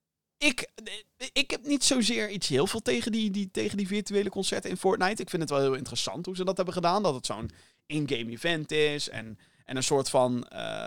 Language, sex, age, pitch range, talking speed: Dutch, male, 20-39, 130-180 Hz, 215 wpm